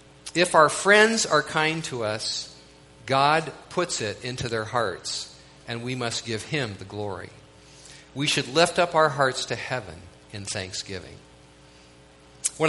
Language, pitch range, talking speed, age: English, 95-150 Hz, 145 wpm, 50-69